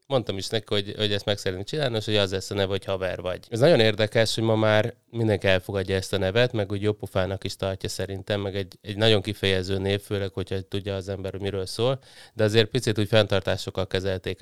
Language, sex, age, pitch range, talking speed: Hungarian, male, 30-49, 95-115 Hz, 220 wpm